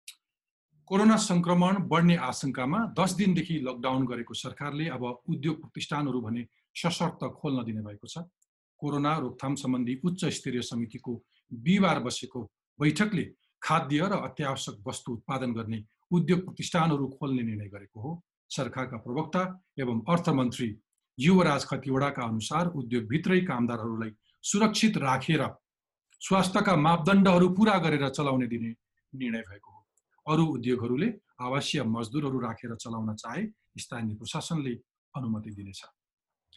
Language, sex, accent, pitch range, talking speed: Marathi, male, native, 125-180 Hz, 95 wpm